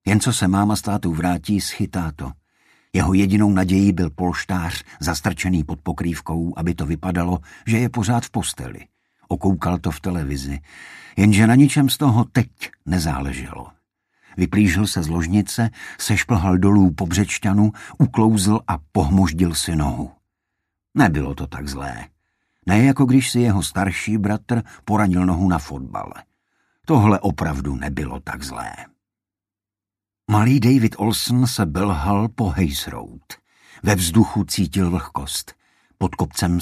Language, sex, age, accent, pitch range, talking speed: Czech, male, 50-69, native, 85-105 Hz, 135 wpm